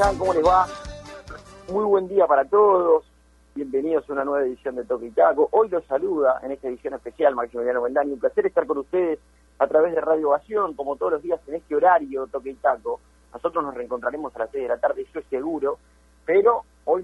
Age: 40-59